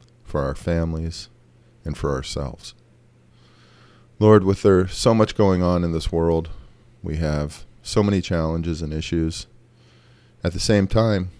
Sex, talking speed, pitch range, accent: male, 135 wpm, 80-115 Hz, American